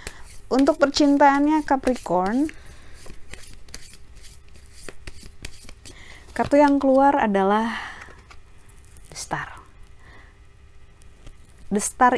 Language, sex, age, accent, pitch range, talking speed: Indonesian, female, 30-49, native, 175-230 Hz, 55 wpm